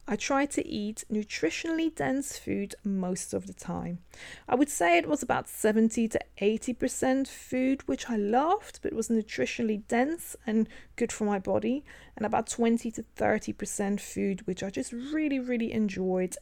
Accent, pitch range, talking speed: British, 200-275 Hz, 165 wpm